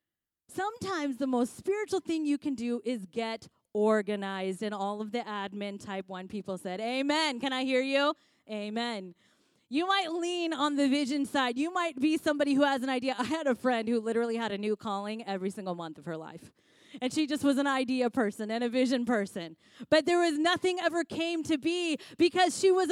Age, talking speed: 30-49, 205 wpm